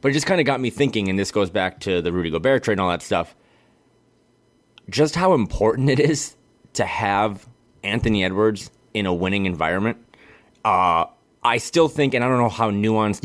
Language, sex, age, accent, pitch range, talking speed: English, male, 30-49, American, 95-120 Hz, 200 wpm